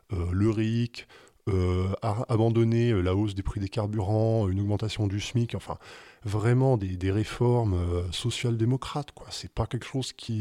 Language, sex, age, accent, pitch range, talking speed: French, male, 20-39, French, 95-120 Hz, 165 wpm